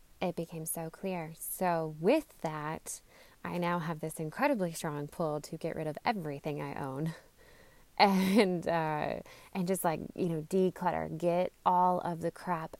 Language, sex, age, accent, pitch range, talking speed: English, female, 20-39, American, 150-175 Hz, 160 wpm